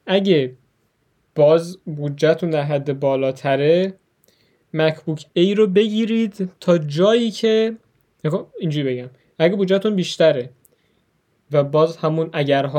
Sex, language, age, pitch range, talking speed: male, Persian, 10-29, 135-175 Hz, 105 wpm